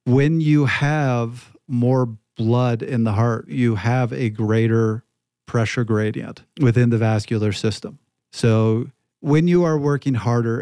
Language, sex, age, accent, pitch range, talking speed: English, male, 40-59, American, 110-130 Hz, 135 wpm